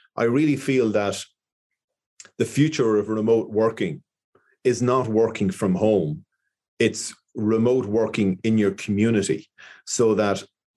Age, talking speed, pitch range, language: 30-49, 125 wpm, 100-120 Hz, English